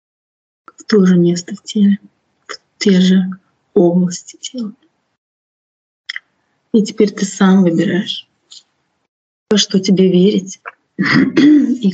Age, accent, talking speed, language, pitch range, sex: 30-49, native, 105 wpm, Russian, 185-205 Hz, female